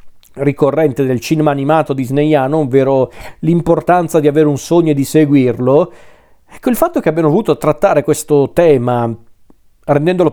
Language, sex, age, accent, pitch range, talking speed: Italian, male, 40-59, native, 130-160 Hz, 140 wpm